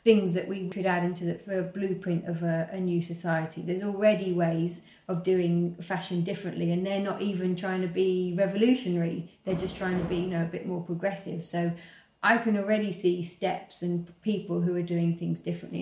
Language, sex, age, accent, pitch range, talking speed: English, female, 30-49, British, 175-205 Hz, 200 wpm